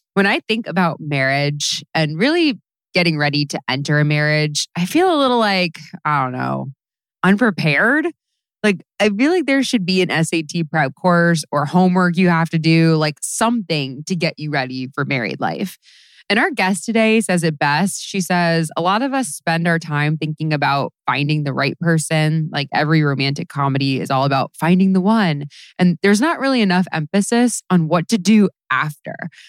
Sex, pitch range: female, 150-200 Hz